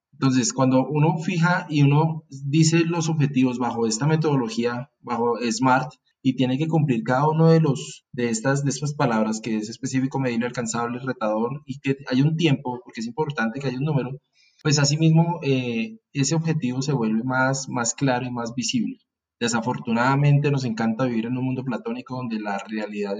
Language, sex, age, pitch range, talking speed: Spanish, male, 20-39, 120-145 Hz, 180 wpm